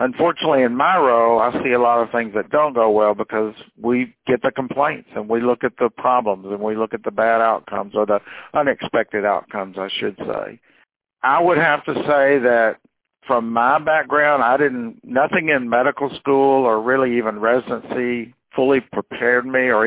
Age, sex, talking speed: 60-79, male, 185 wpm